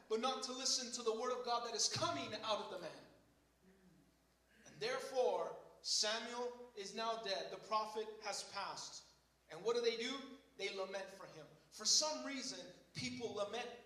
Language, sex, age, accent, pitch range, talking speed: English, male, 30-49, American, 180-240 Hz, 175 wpm